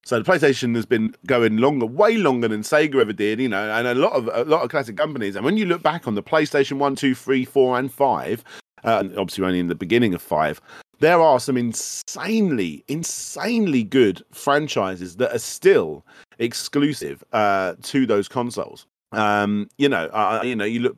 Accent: British